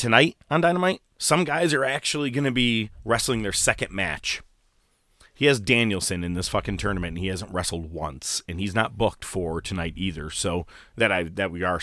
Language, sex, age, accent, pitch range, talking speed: English, male, 30-49, American, 85-115 Hz, 200 wpm